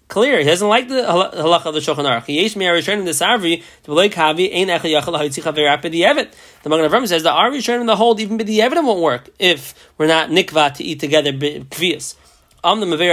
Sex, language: male, English